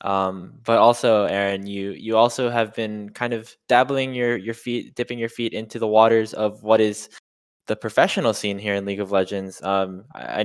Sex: male